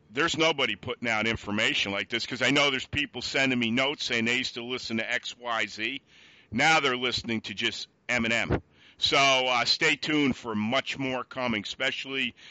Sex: male